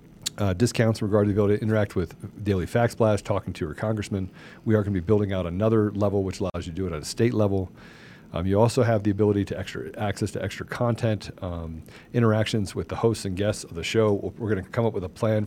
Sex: male